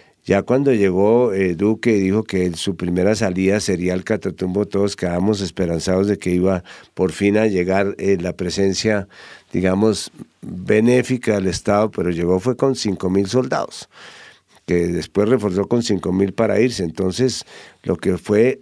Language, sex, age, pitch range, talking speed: English, male, 50-69, 90-110 Hz, 160 wpm